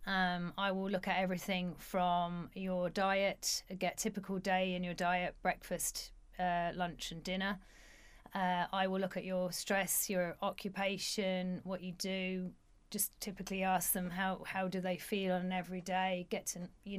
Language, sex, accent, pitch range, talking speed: English, female, British, 180-195 Hz, 165 wpm